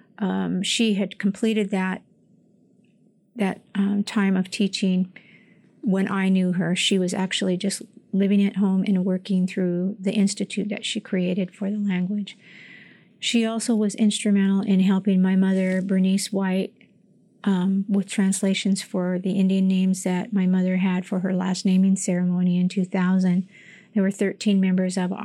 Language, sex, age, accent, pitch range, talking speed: English, female, 40-59, American, 185-200 Hz, 155 wpm